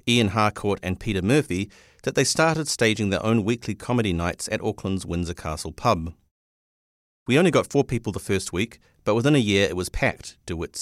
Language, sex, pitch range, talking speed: English, male, 95-120 Hz, 195 wpm